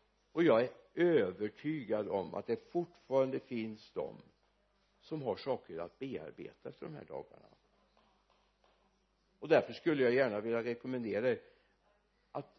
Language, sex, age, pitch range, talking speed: Swedish, male, 60-79, 115-175 Hz, 135 wpm